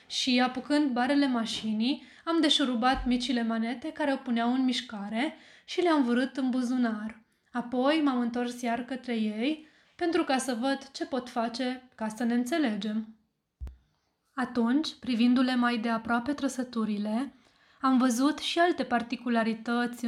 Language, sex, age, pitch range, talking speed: Romanian, female, 20-39, 230-270 Hz, 135 wpm